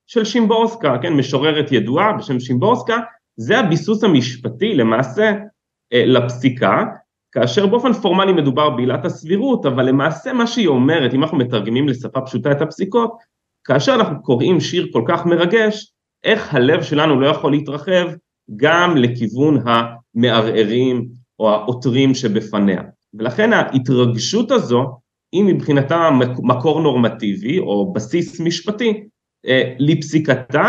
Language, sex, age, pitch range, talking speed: Hebrew, male, 30-49, 125-170 Hz, 120 wpm